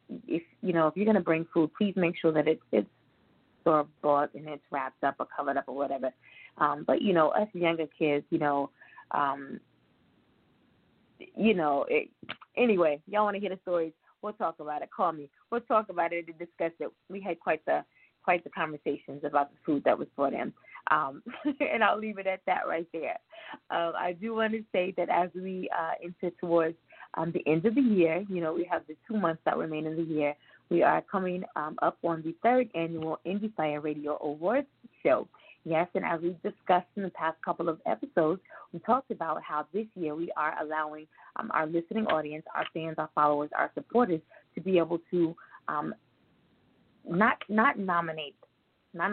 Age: 20-39